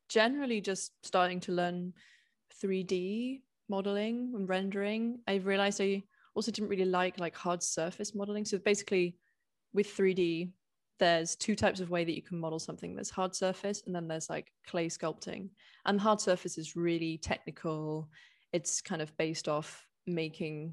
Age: 20-39